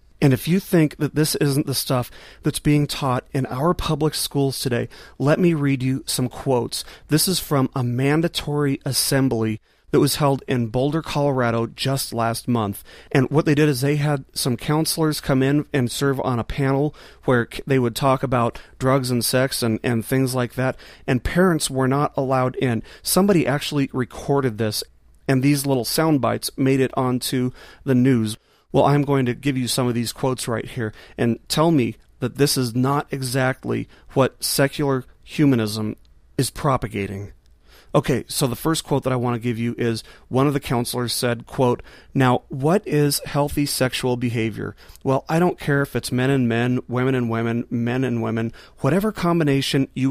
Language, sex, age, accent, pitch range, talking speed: English, male, 40-59, American, 120-140 Hz, 185 wpm